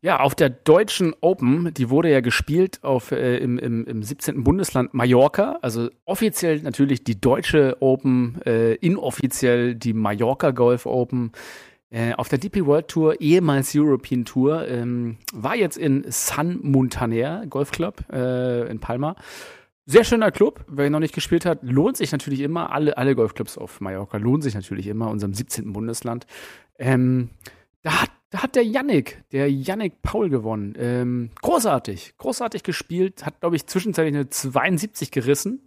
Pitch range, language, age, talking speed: 125-170 Hz, German, 40-59, 160 wpm